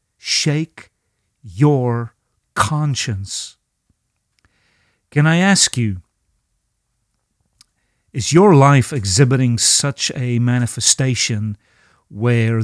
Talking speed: 70 wpm